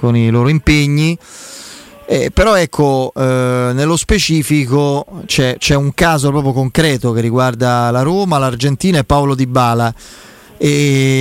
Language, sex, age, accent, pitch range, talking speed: Italian, male, 30-49, native, 130-155 Hz, 140 wpm